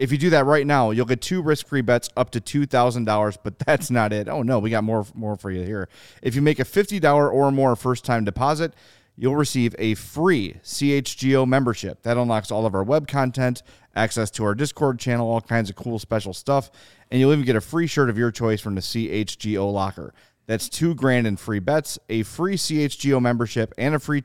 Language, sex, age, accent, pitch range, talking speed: English, male, 30-49, American, 110-135 Hz, 215 wpm